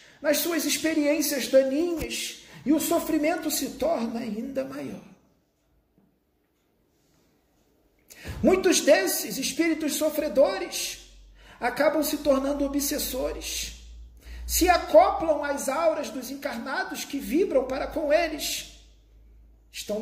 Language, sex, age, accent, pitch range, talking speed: Portuguese, male, 40-59, Brazilian, 260-325 Hz, 95 wpm